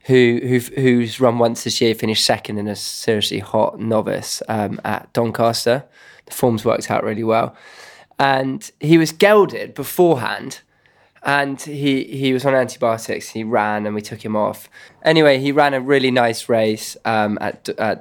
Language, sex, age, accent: English, male, 20-39, British